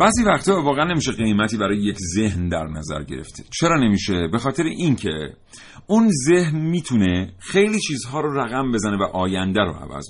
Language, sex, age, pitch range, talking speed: Persian, male, 40-59, 95-135 Hz, 165 wpm